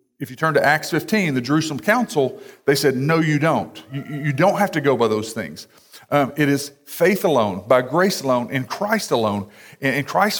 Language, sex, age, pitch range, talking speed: English, male, 40-59, 135-175 Hz, 215 wpm